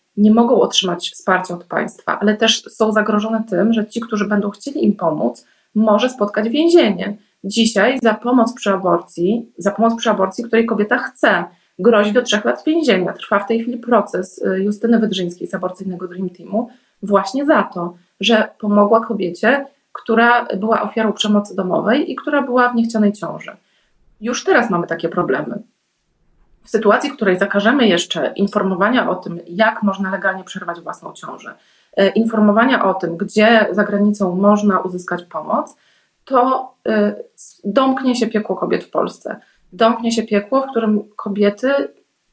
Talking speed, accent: 155 wpm, native